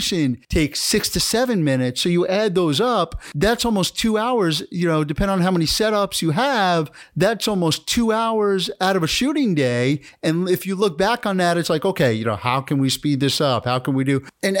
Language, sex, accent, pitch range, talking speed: English, male, American, 140-195 Hz, 225 wpm